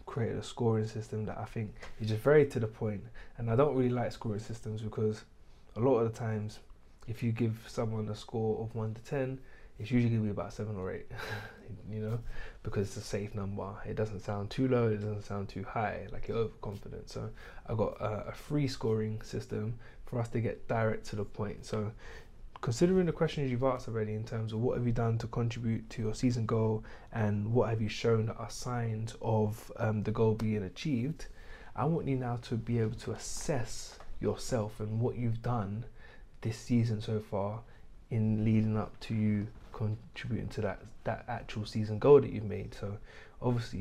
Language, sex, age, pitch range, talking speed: English, male, 20-39, 105-120 Hz, 205 wpm